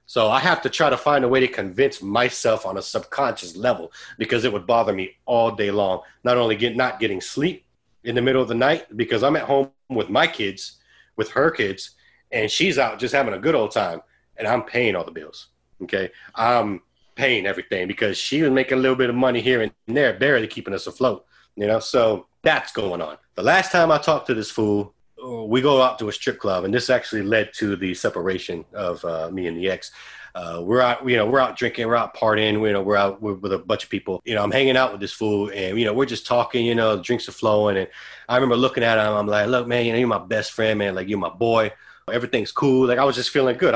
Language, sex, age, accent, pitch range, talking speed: English, male, 30-49, American, 105-125 Hz, 250 wpm